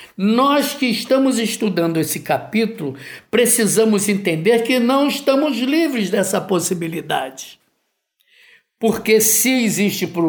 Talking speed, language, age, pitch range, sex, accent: 105 wpm, Portuguese, 60-79, 170-240 Hz, male, Brazilian